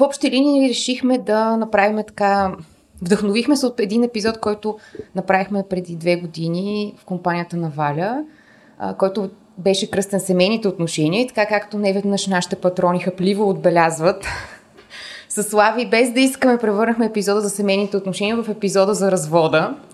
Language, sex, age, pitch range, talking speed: Bulgarian, female, 20-39, 175-210 Hz, 145 wpm